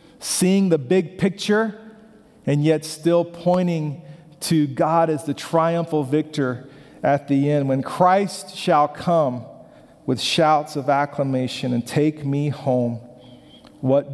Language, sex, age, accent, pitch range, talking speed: English, male, 40-59, American, 120-145 Hz, 125 wpm